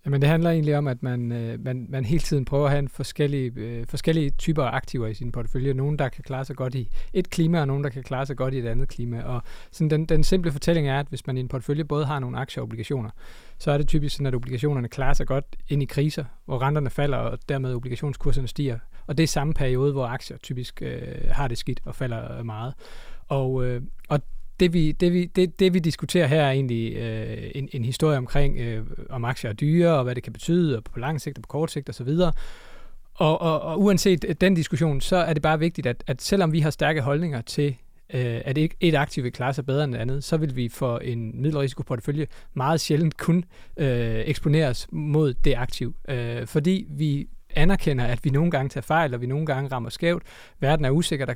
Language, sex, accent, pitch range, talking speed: Danish, male, native, 125-155 Hz, 240 wpm